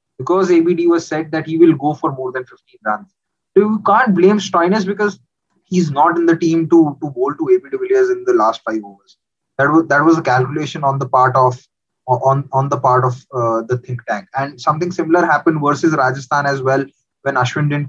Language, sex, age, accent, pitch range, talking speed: English, male, 20-39, Indian, 135-185 Hz, 220 wpm